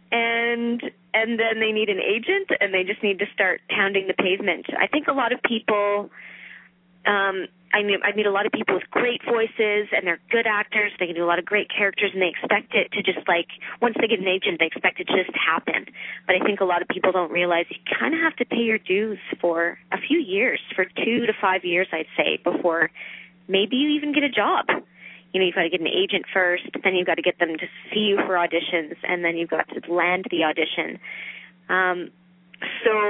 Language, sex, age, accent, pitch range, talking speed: English, female, 20-39, American, 180-220 Hz, 235 wpm